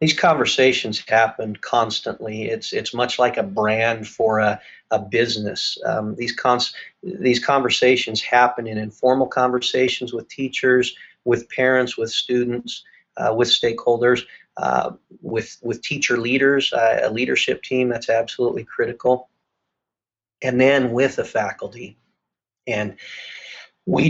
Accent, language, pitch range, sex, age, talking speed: American, English, 115-130 Hz, male, 40-59, 125 wpm